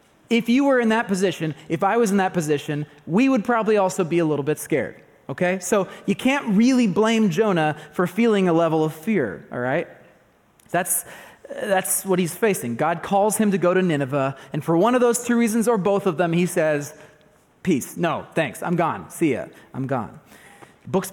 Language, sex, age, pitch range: English, male, 30-49, 155-195 Hz